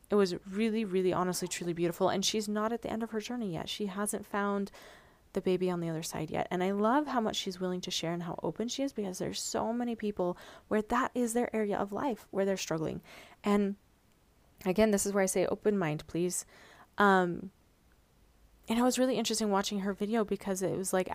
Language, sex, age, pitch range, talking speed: English, female, 20-39, 180-220 Hz, 225 wpm